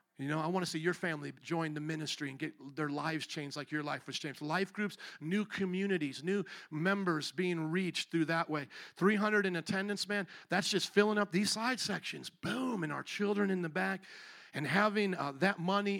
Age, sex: 50-69, male